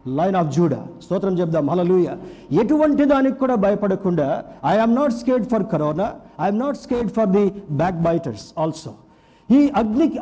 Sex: male